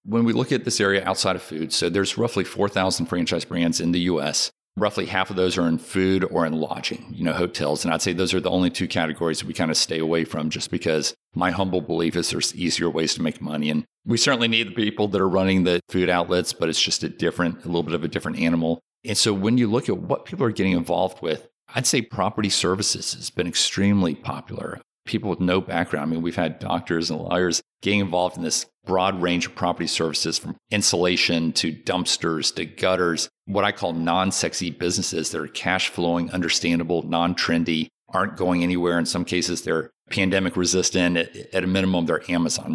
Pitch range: 85-95 Hz